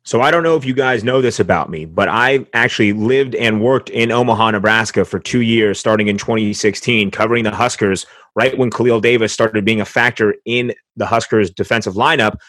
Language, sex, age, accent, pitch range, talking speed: English, male, 30-49, American, 110-130 Hz, 200 wpm